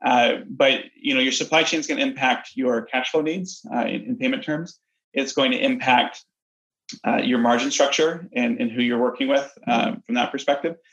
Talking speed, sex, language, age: 210 wpm, male, English, 30-49